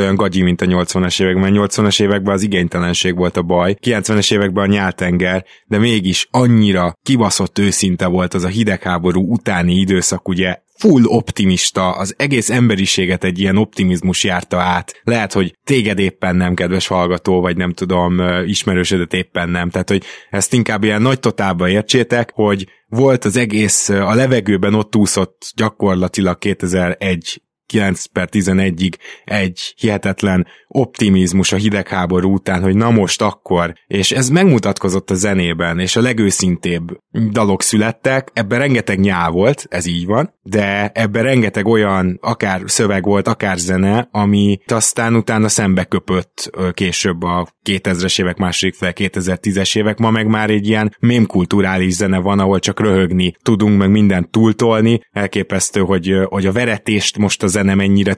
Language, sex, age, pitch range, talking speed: Hungarian, male, 20-39, 90-110 Hz, 150 wpm